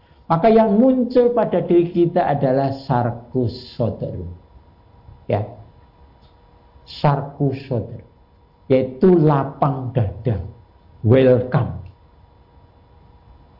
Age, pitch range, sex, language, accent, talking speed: 50-69, 110-170 Hz, male, Indonesian, native, 70 wpm